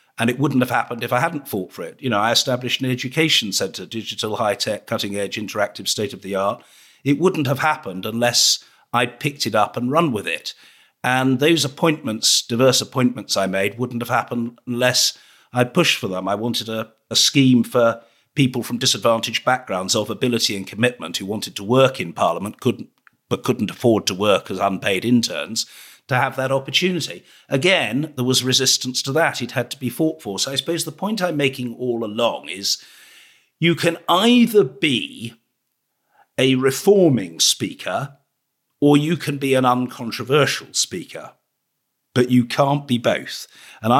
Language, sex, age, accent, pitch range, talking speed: English, male, 50-69, British, 115-140 Hz, 175 wpm